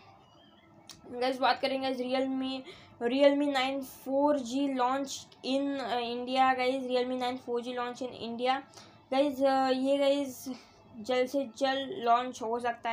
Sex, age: female, 20-39